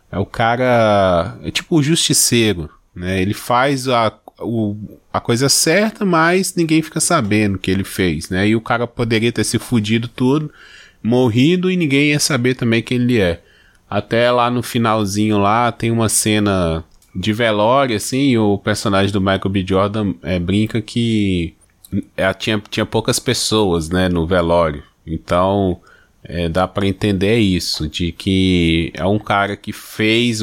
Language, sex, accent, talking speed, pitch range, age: Portuguese, male, Brazilian, 155 wpm, 95-125 Hz, 20-39